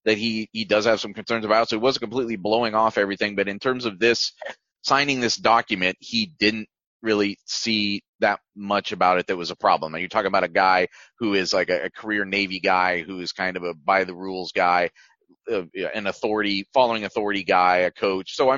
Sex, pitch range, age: male, 100-130 Hz, 30-49